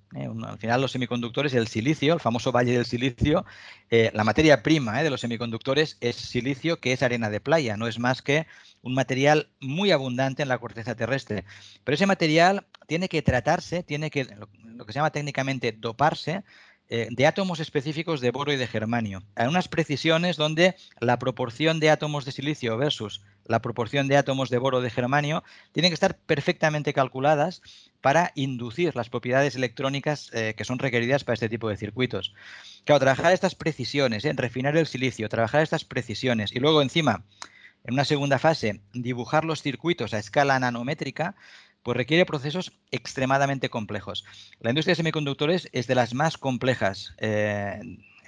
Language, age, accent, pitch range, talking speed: English, 50-69, Spanish, 115-150 Hz, 175 wpm